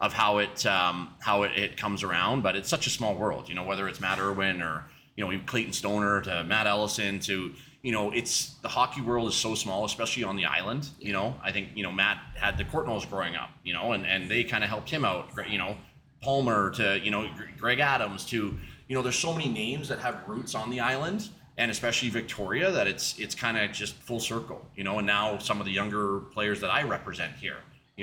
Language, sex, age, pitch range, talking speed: English, male, 30-49, 100-125 Hz, 240 wpm